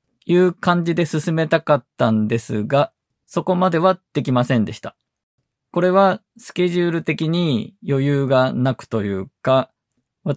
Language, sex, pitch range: Japanese, male, 120-160 Hz